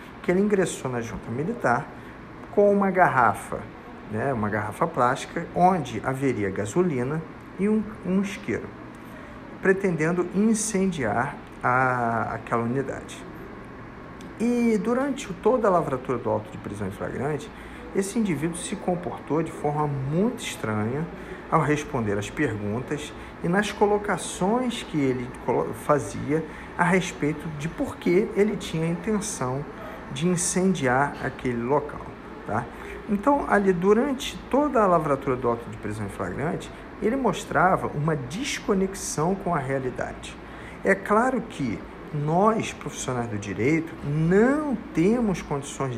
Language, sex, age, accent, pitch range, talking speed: Portuguese, male, 50-69, Brazilian, 130-210 Hz, 125 wpm